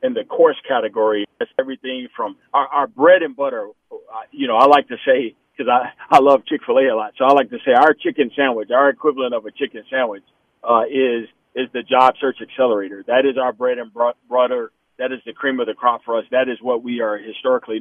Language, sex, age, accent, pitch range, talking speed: English, male, 40-59, American, 120-140 Hz, 230 wpm